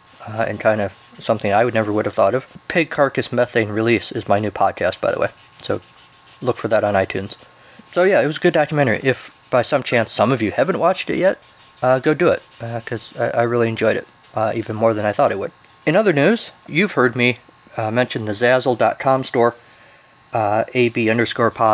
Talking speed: 220 wpm